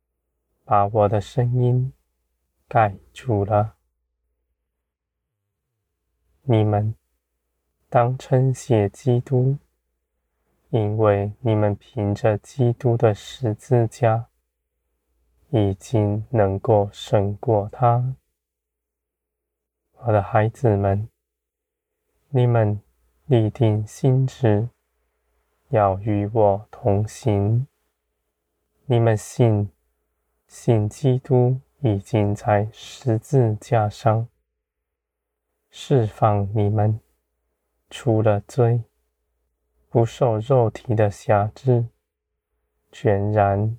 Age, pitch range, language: 20-39, 75-120 Hz, Chinese